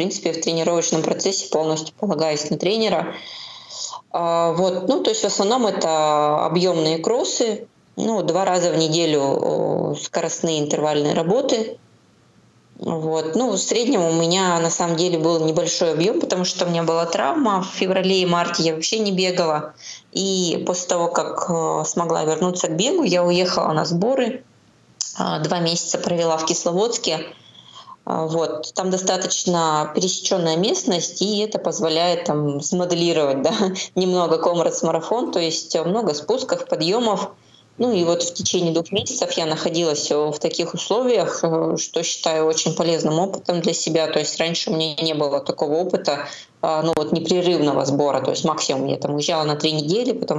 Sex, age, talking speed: female, 20-39, 155 wpm